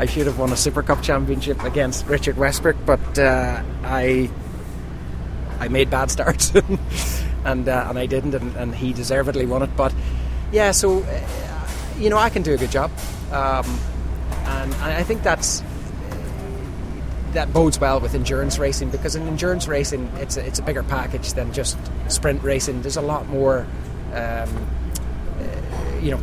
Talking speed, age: 175 wpm, 20-39